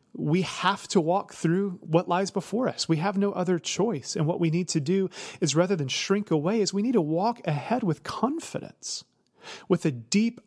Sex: male